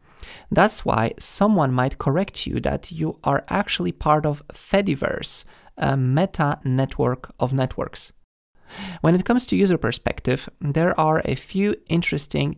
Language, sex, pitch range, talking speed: English, male, 125-165 Hz, 140 wpm